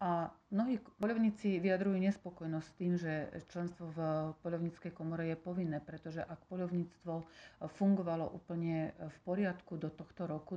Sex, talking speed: female, 130 wpm